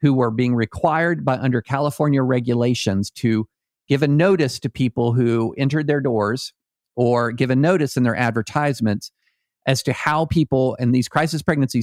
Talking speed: 165 wpm